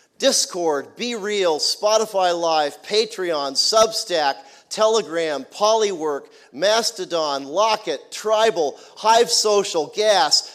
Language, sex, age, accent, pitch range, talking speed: English, male, 40-59, American, 205-235 Hz, 85 wpm